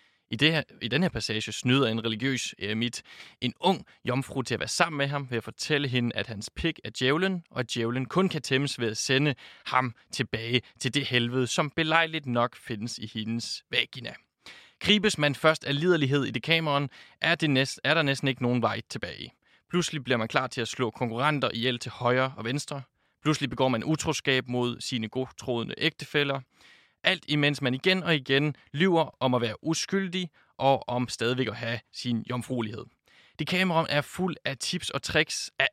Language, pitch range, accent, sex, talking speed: Danish, 125-155 Hz, native, male, 190 wpm